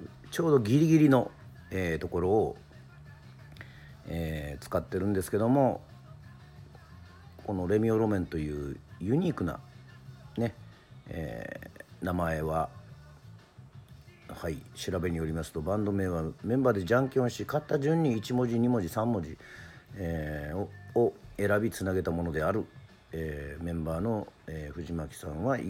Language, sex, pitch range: Japanese, male, 80-115 Hz